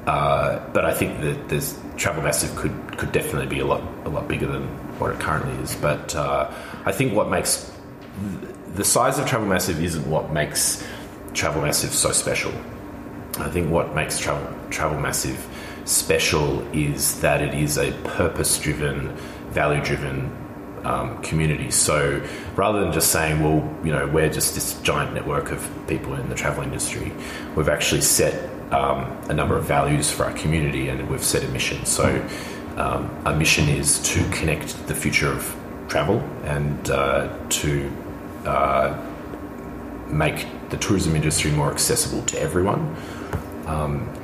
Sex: male